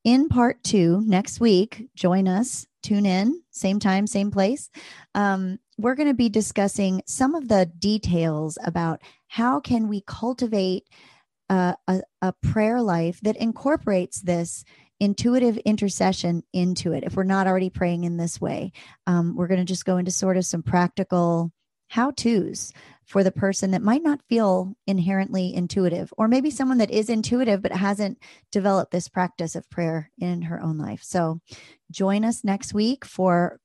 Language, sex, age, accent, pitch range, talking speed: English, male, 30-49, American, 175-210 Hz, 165 wpm